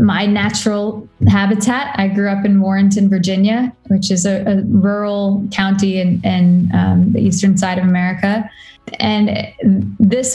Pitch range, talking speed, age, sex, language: 190-215 Hz, 145 wpm, 20-39, female, English